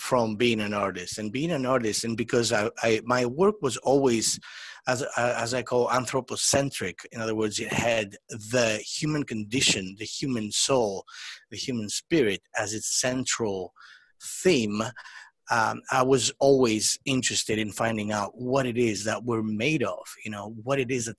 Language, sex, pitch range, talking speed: English, male, 110-145 Hz, 170 wpm